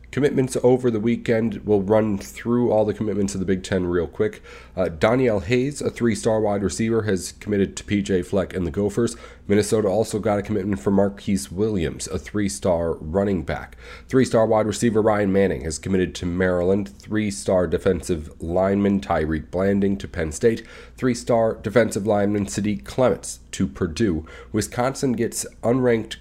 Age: 30-49